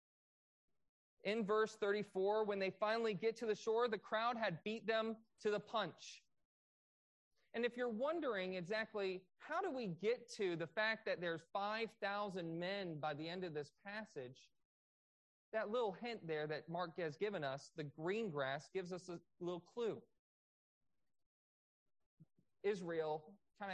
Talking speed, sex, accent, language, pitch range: 150 wpm, male, American, English, 170-220 Hz